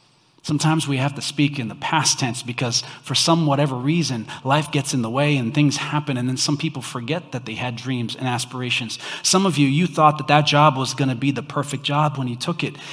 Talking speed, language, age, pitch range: 240 wpm, English, 30-49, 130-155 Hz